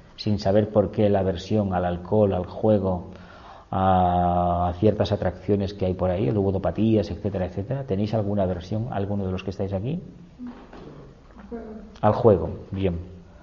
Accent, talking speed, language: Spanish, 145 wpm, Spanish